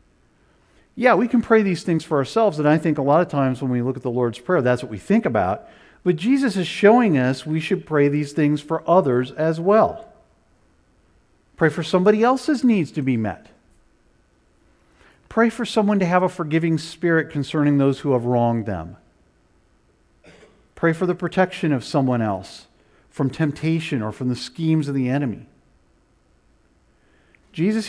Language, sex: English, male